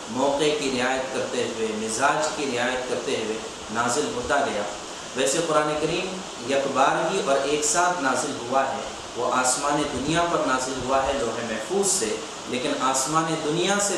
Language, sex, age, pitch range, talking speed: Urdu, male, 40-59, 135-165 Hz, 170 wpm